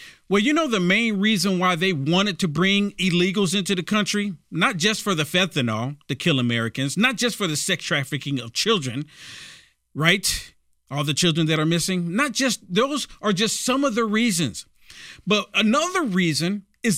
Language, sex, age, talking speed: English, male, 40-59, 180 wpm